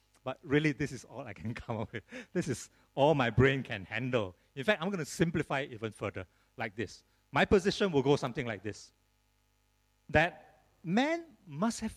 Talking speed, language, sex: 195 wpm, English, male